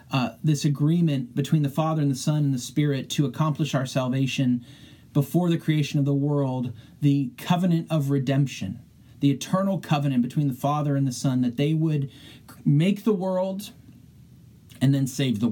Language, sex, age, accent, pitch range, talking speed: English, male, 40-59, American, 125-150 Hz, 170 wpm